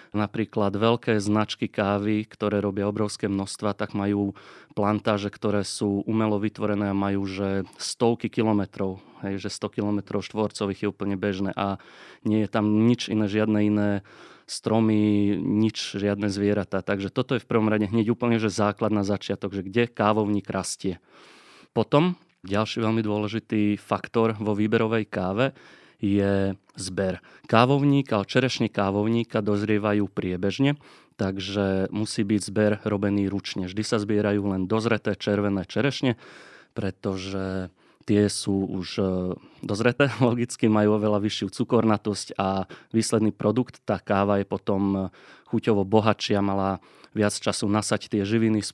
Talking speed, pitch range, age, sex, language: 135 wpm, 100-110 Hz, 30-49, male, Slovak